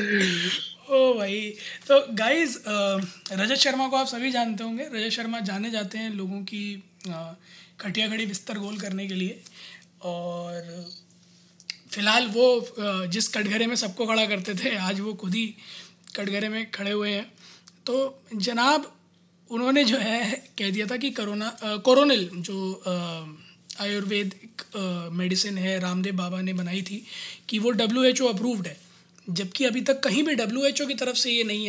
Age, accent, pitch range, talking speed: 20-39, native, 190-230 Hz, 160 wpm